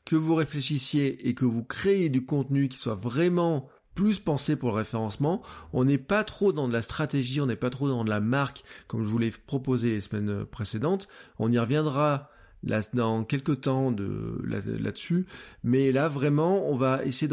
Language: French